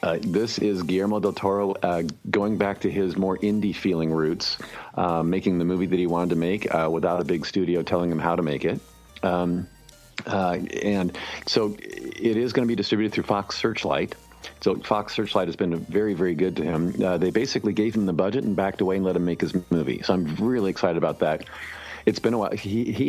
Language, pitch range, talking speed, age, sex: English, 85-100 Hz, 220 wpm, 40-59, male